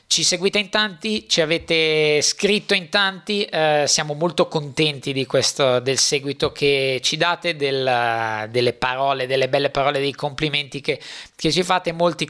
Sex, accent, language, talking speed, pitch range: male, native, Italian, 160 wpm, 140-165 Hz